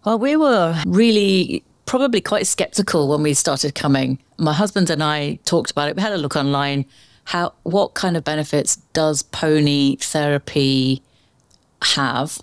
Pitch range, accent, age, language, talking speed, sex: 145-190 Hz, British, 40-59, English, 155 wpm, female